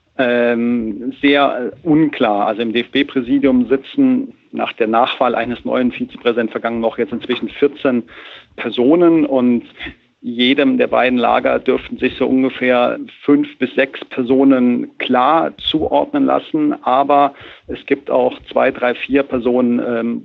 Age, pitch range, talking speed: 50-69, 120-180 Hz, 130 wpm